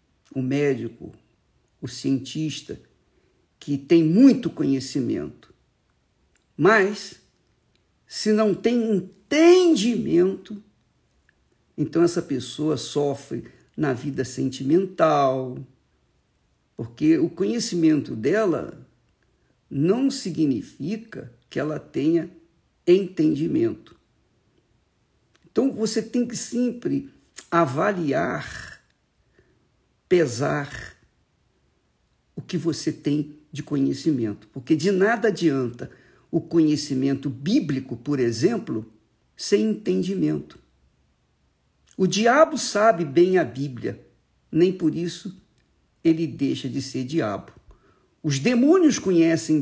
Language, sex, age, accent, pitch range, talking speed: Portuguese, male, 50-69, Brazilian, 135-195 Hz, 85 wpm